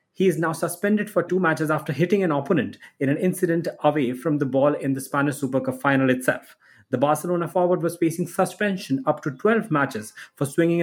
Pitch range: 140-170 Hz